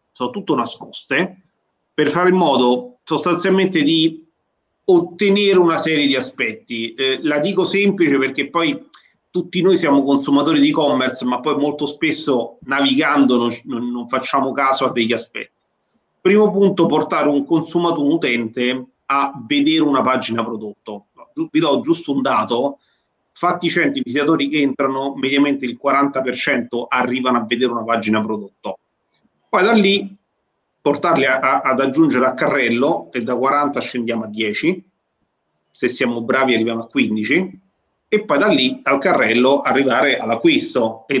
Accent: native